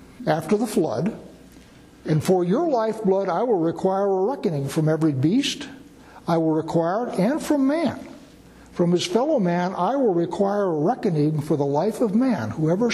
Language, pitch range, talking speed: English, 160-210 Hz, 170 wpm